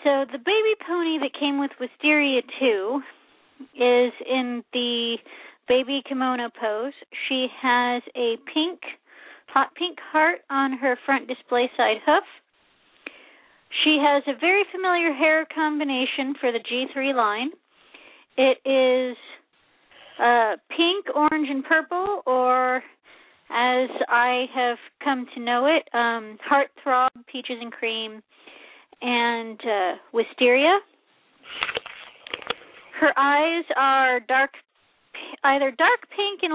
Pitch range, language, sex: 245-310 Hz, English, female